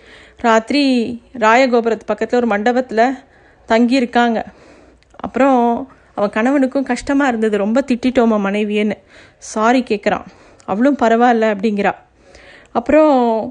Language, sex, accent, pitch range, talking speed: Tamil, female, native, 230-275 Hz, 95 wpm